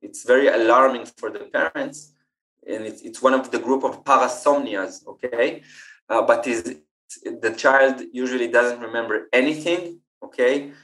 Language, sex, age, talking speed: English, male, 20-39, 150 wpm